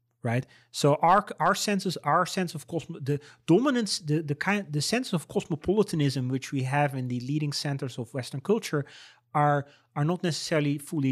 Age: 30-49